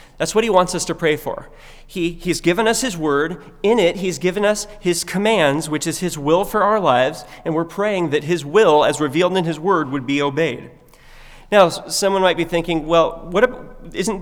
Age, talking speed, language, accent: 30-49, 205 wpm, English, American